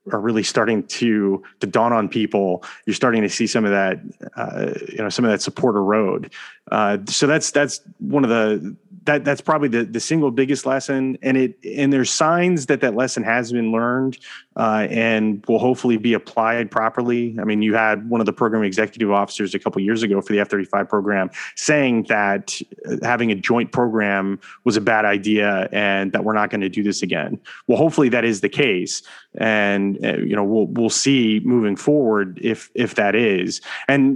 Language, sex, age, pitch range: English, male, 30-49, 105-125 Hz